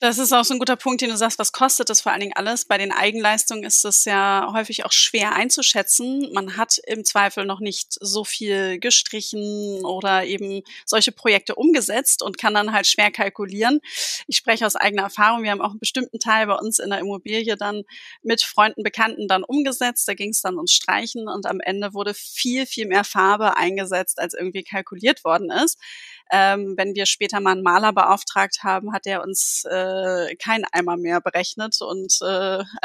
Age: 20-39